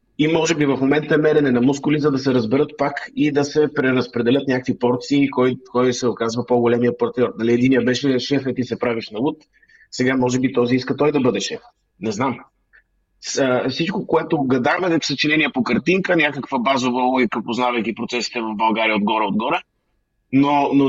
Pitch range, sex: 120-150 Hz, male